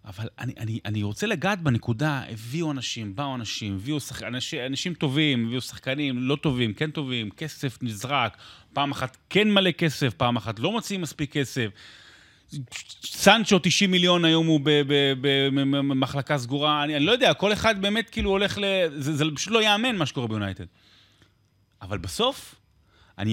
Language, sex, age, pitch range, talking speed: Hebrew, male, 30-49, 105-160 Hz, 170 wpm